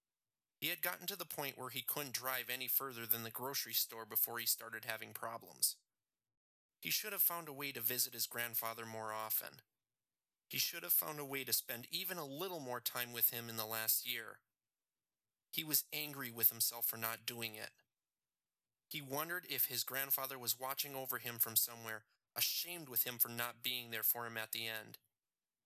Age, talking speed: 30-49, 195 wpm